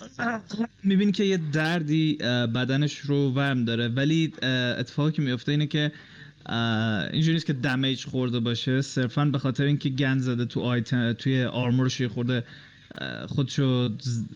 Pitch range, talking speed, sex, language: 125-150 Hz, 125 wpm, male, Persian